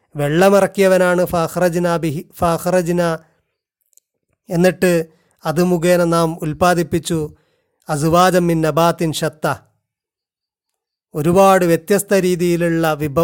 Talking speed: 65 wpm